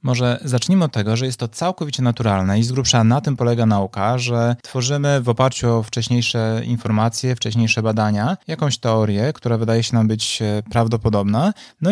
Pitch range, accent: 115-140 Hz, native